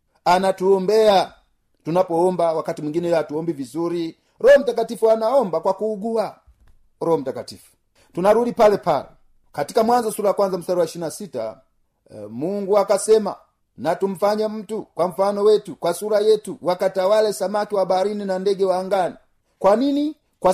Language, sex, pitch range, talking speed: Swahili, male, 175-220 Hz, 135 wpm